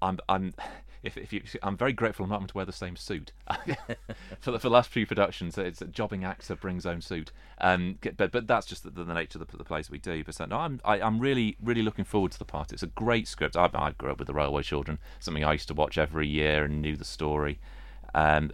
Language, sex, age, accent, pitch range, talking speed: English, male, 30-49, British, 75-90 Hz, 260 wpm